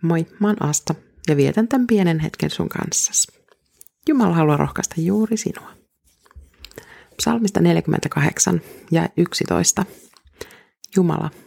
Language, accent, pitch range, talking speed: Finnish, native, 145-190 Hz, 105 wpm